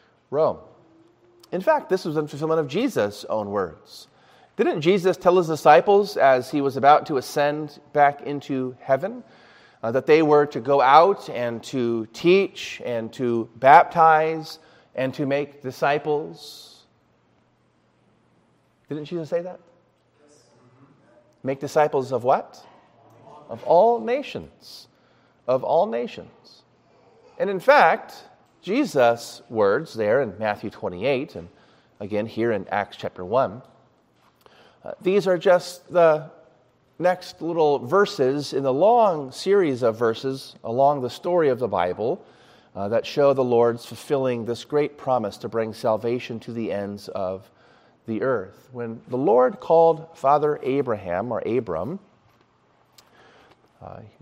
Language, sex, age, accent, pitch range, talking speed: English, male, 30-49, American, 120-160 Hz, 130 wpm